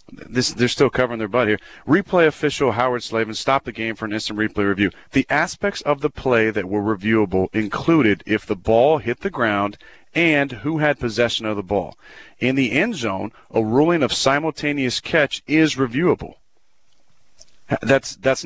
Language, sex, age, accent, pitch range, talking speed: English, male, 40-59, American, 115-145 Hz, 170 wpm